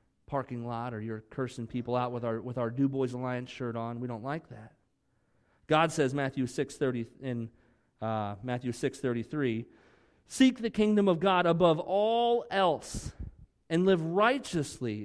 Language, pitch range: English, 115-165 Hz